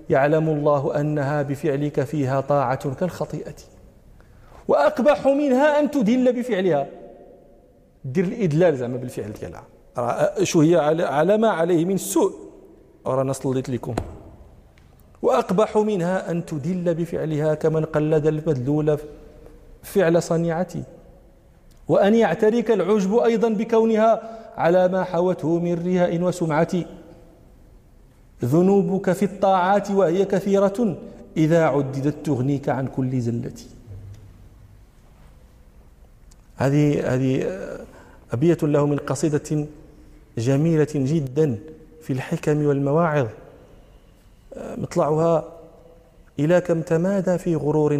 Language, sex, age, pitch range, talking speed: Arabic, male, 40-59, 145-190 Hz, 95 wpm